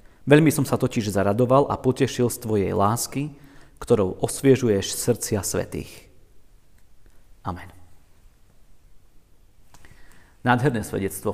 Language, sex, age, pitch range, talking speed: Slovak, male, 40-59, 105-135 Hz, 90 wpm